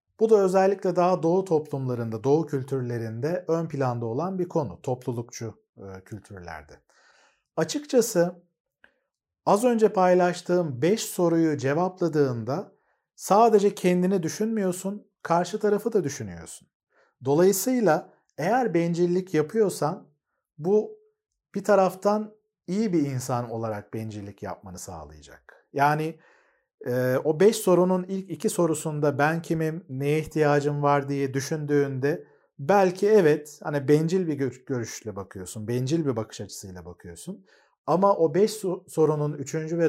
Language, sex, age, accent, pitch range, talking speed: Turkish, male, 40-59, native, 130-185 Hz, 115 wpm